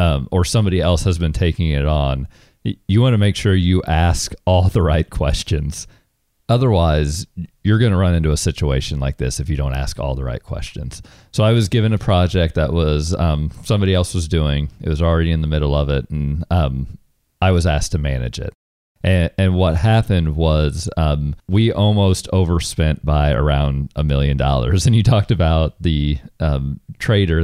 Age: 40-59